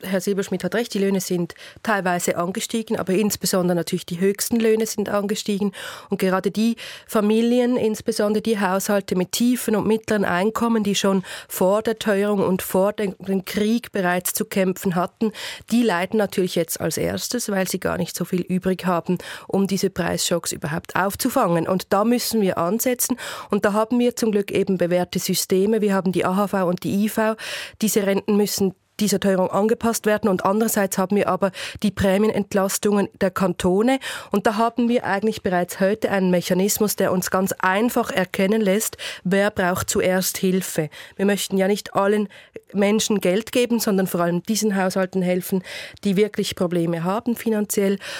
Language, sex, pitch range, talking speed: German, female, 185-215 Hz, 170 wpm